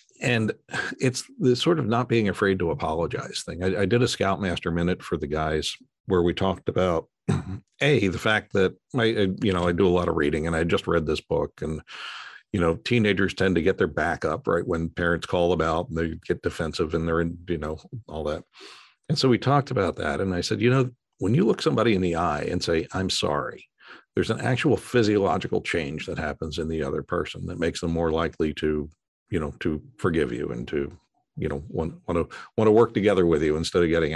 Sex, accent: male, American